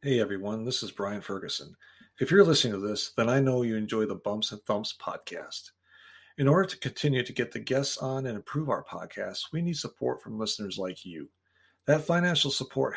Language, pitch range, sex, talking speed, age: English, 110-140 Hz, male, 205 wpm, 40-59